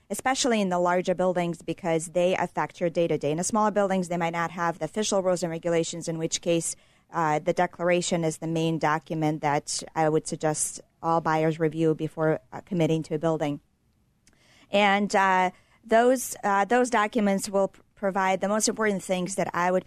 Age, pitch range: 40-59, 165-190 Hz